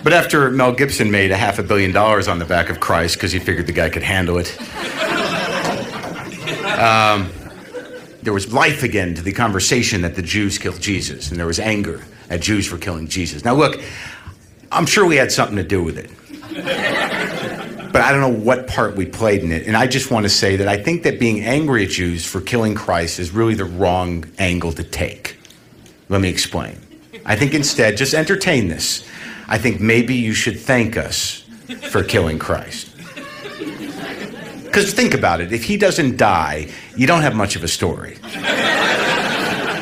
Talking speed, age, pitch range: 185 wpm, 50-69, 95-140 Hz